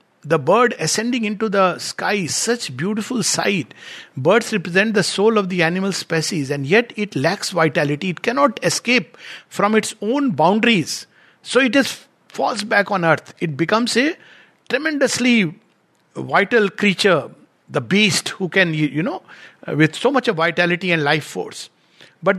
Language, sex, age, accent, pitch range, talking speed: English, male, 60-79, Indian, 165-230 Hz, 155 wpm